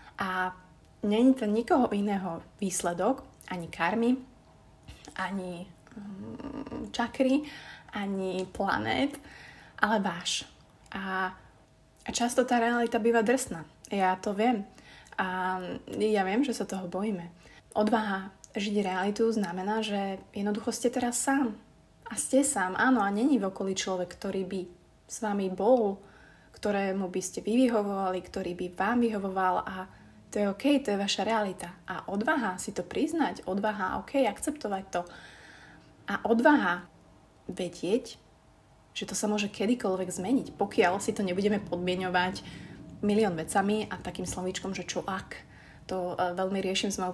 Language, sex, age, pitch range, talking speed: Slovak, female, 20-39, 185-230 Hz, 135 wpm